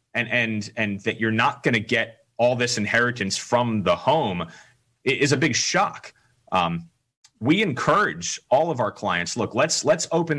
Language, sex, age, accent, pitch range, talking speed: English, male, 30-49, American, 105-130 Hz, 165 wpm